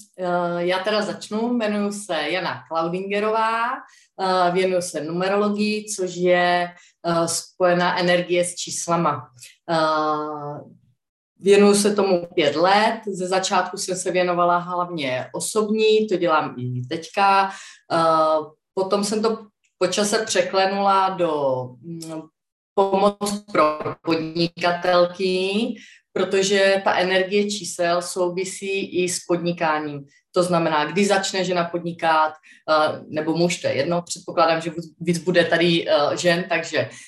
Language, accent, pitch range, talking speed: Czech, native, 160-190 Hz, 110 wpm